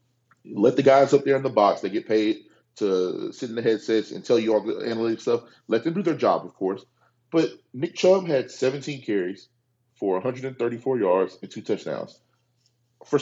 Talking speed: 195 wpm